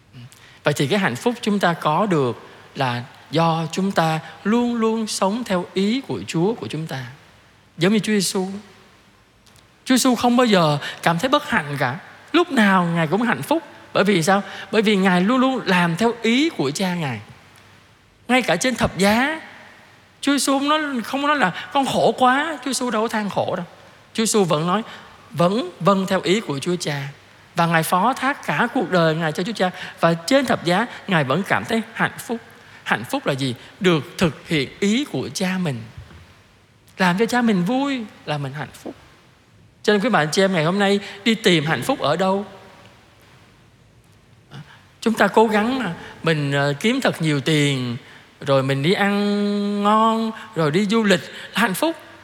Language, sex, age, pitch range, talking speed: Vietnamese, male, 20-39, 160-230 Hz, 190 wpm